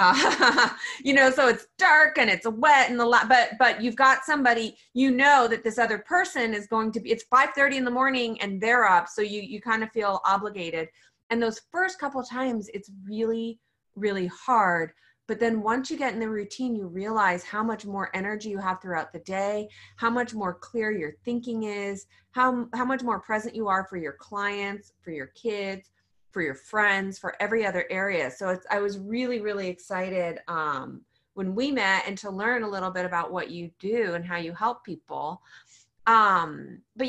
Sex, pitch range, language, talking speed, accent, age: female, 195-240 Hz, English, 200 wpm, American, 30-49